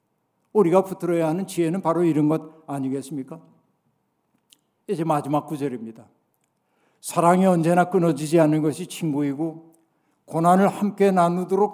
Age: 60-79